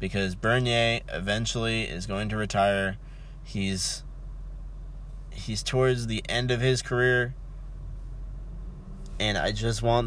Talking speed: 115 wpm